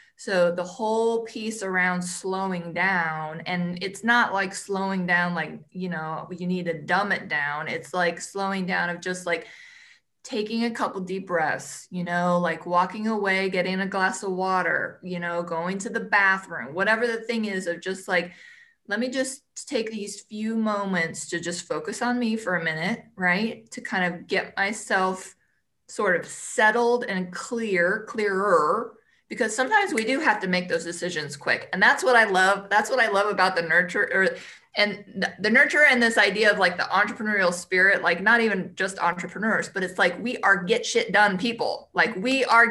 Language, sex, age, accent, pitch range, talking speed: English, female, 20-39, American, 180-225 Hz, 190 wpm